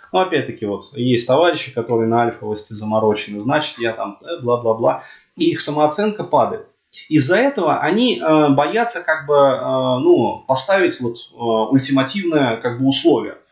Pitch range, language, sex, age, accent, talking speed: 120-165 Hz, Russian, male, 20-39, native, 145 wpm